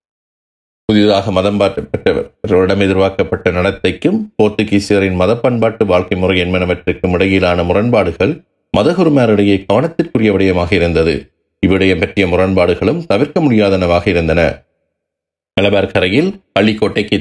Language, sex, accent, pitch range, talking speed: Tamil, male, native, 90-105 Hz, 85 wpm